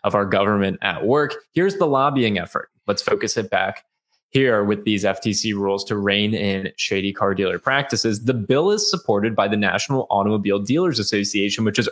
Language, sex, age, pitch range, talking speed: English, male, 20-39, 105-135 Hz, 185 wpm